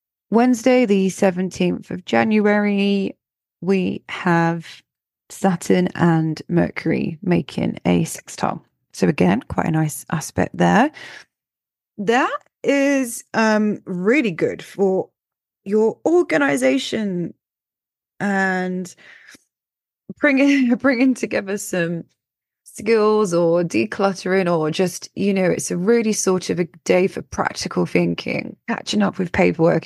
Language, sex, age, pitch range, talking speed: English, female, 20-39, 170-215 Hz, 105 wpm